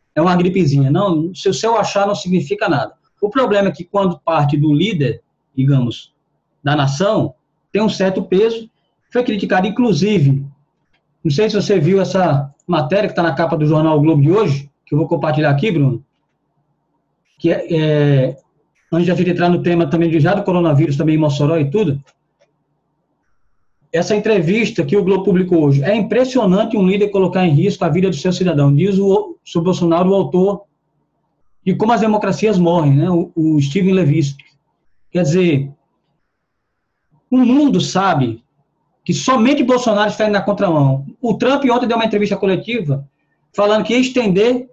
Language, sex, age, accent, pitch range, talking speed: English, male, 20-39, Brazilian, 155-205 Hz, 175 wpm